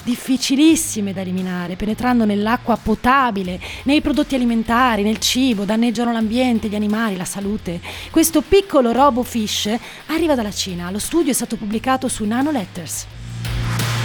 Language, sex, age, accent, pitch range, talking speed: Italian, female, 30-49, native, 190-265 Hz, 130 wpm